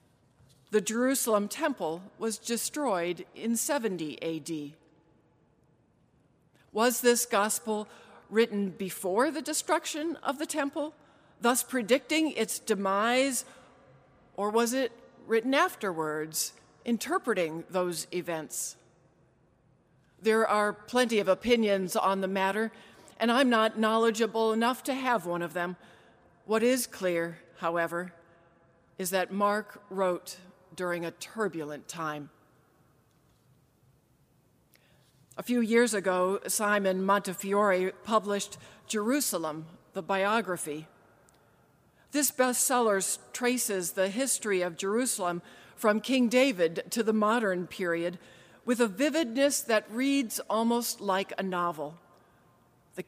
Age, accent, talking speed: 50-69, American, 105 wpm